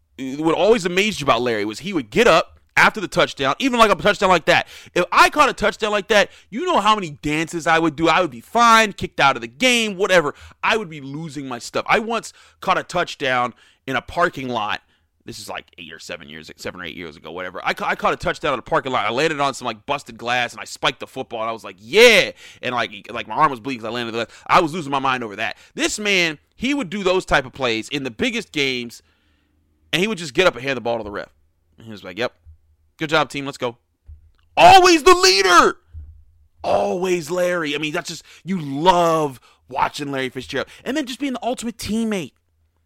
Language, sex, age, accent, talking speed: English, male, 30-49, American, 245 wpm